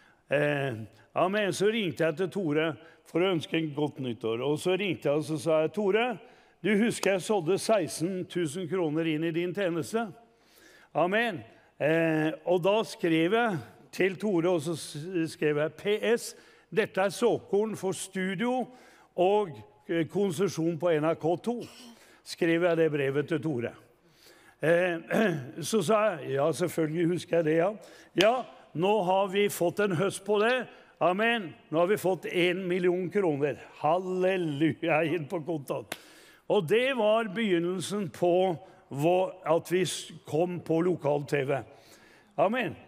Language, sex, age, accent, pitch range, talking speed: English, male, 60-79, Swedish, 165-205 Hz, 145 wpm